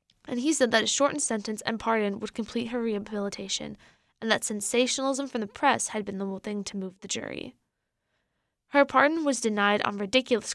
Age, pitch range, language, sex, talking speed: 10-29, 205-255 Hz, English, female, 190 wpm